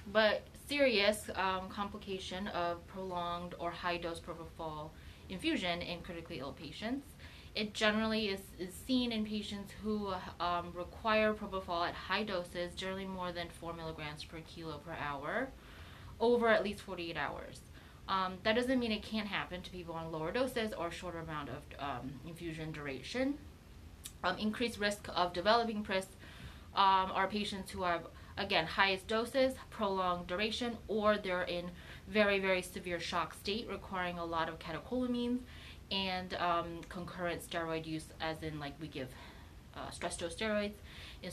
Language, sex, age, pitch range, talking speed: English, female, 20-39, 170-215 Hz, 155 wpm